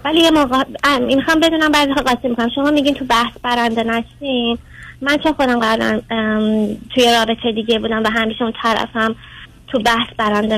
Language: Persian